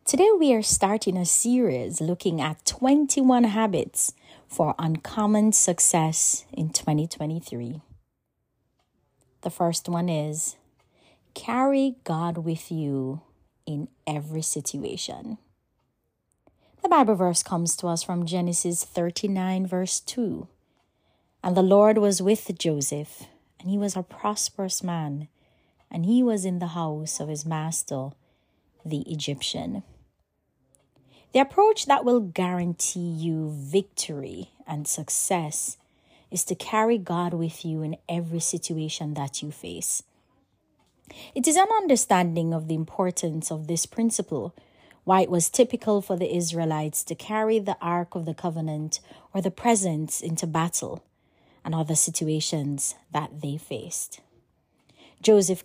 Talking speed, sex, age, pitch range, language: 125 wpm, female, 30-49, 155-200 Hz, English